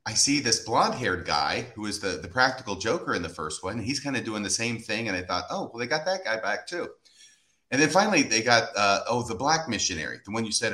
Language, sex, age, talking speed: English, male, 40-59, 270 wpm